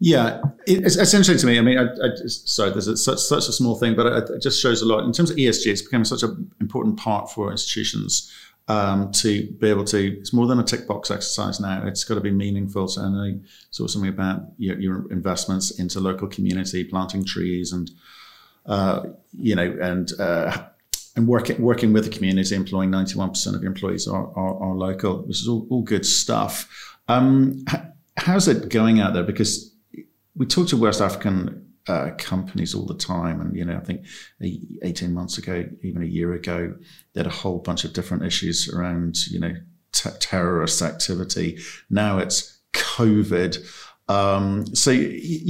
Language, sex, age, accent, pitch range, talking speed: English, male, 50-69, British, 95-125 Hz, 190 wpm